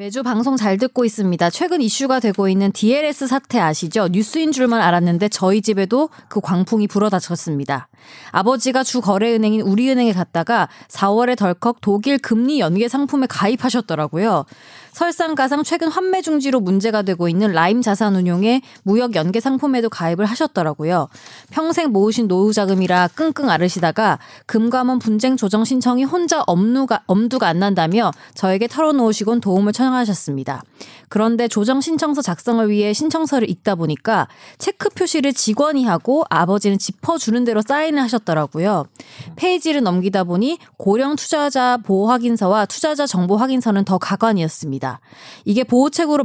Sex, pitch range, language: female, 190-265 Hz, Korean